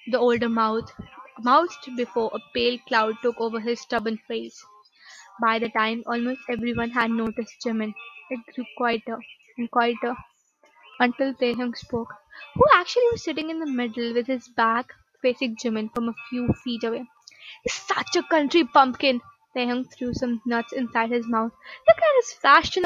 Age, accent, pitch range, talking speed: 20-39, Indian, 230-290 Hz, 160 wpm